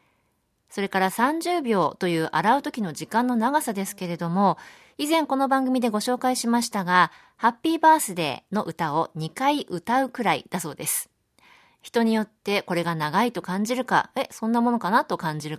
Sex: female